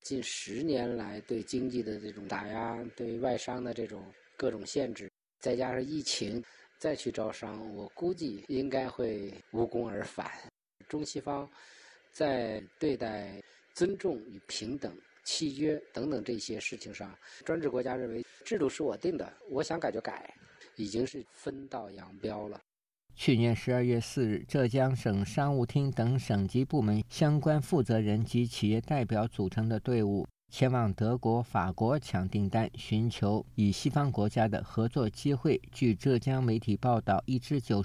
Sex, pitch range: male, 105-135 Hz